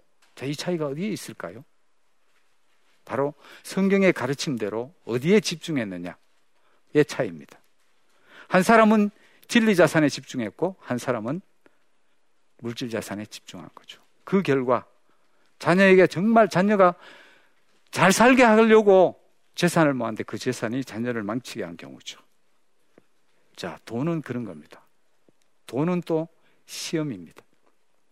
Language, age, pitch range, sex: Korean, 50-69, 120-180 Hz, male